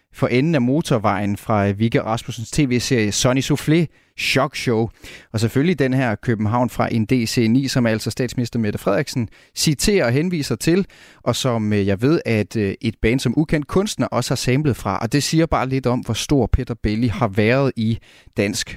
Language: Danish